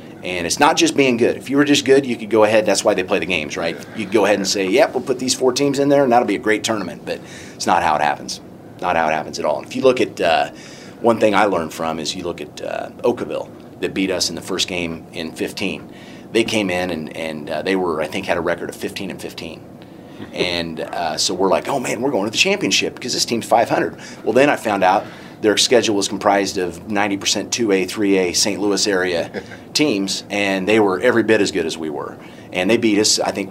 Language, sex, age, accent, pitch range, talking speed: English, male, 30-49, American, 90-110 Hz, 265 wpm